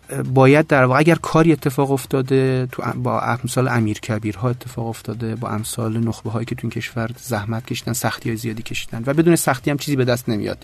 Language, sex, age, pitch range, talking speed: Persian, male, 30-49, 110-130 Hz, 195 wpm